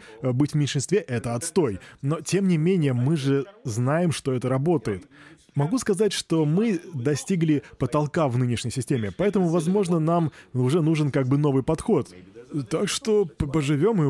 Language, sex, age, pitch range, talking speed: Russian, male, 20-39, 140-190 Hz, 160 wpm